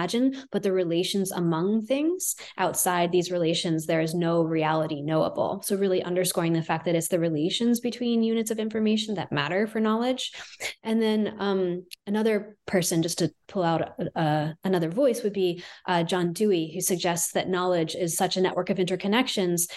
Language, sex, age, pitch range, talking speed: English, female, 20-39, 175-215 Hz, 175 wpm